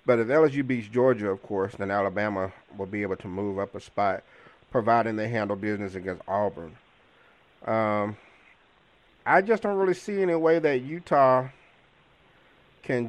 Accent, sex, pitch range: American, male, 110-155 Hz